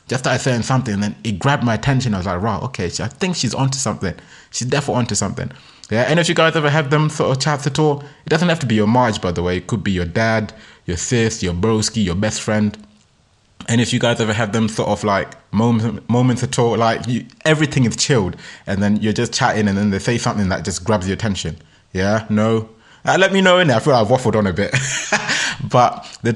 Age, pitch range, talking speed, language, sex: 20-39, 100-130 Hz, 255 wpm, English, male